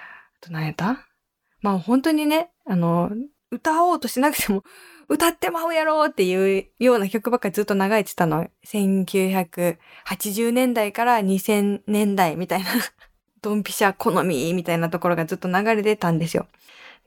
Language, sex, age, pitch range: Japanese, female, 20-39, 185-250 Hz